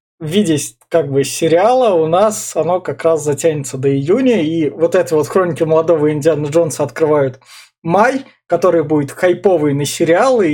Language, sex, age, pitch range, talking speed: Russian, male, 20-39, 145-180 Hz, 155 wpm